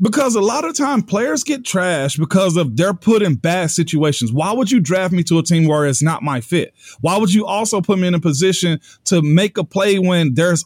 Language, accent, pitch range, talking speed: English, American, 160-210 Hz, 240 wpm